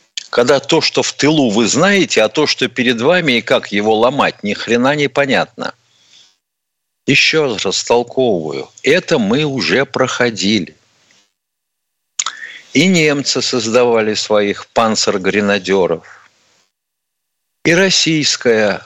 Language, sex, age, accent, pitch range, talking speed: Russian, male, 50-69, native, 95-145 Hz, 110 wpm